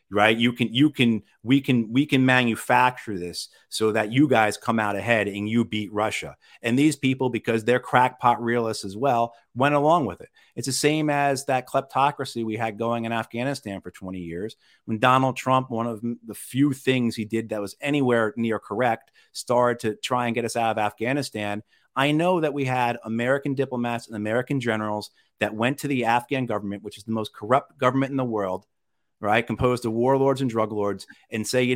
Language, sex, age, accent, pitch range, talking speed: English, male, 40-59, American, 110-130 Hz, 205 wpm